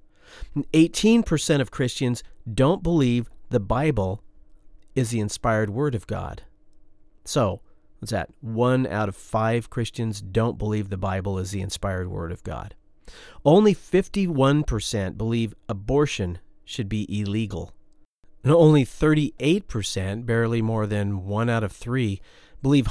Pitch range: 105-140 Hz